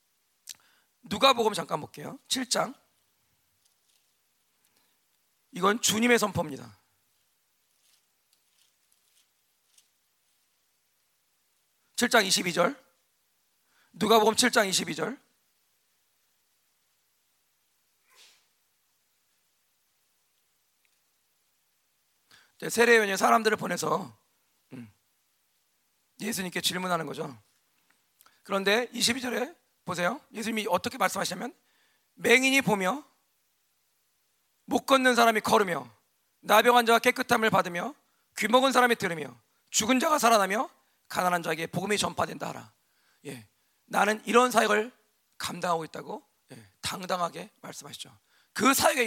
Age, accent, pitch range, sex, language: 40-59, native, 185-240 Hz, male, Korean